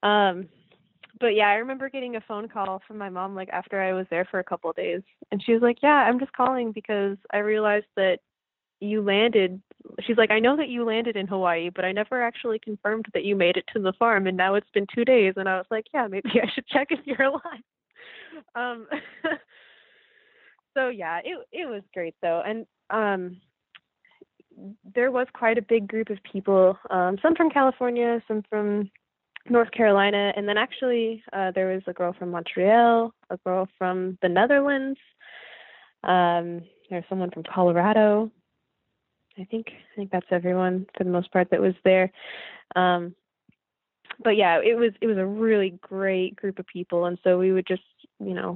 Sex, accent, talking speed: female, American, 190 wpm